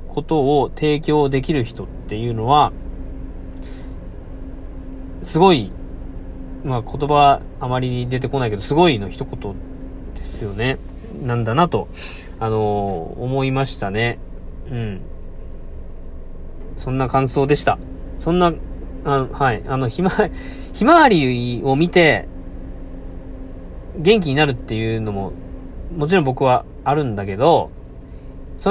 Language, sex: Japanese, male